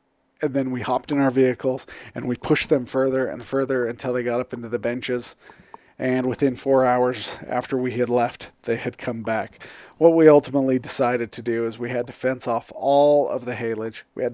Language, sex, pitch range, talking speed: English, male, 115-135 Hz, 215 wpm